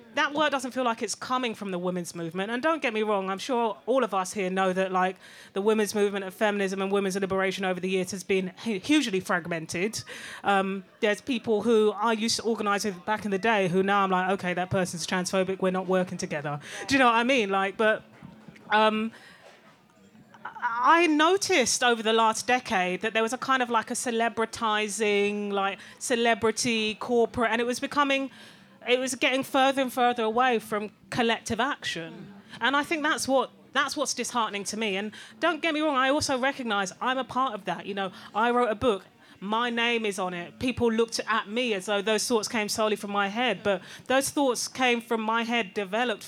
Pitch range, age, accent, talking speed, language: 195-245 Hz, 30-49, British, 205 wpm, English